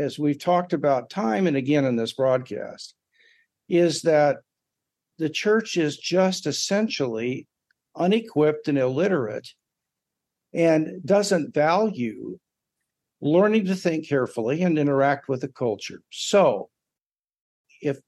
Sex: male